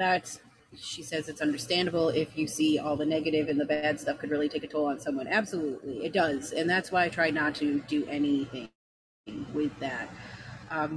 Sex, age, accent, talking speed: female, 30-49, American, 200 wpm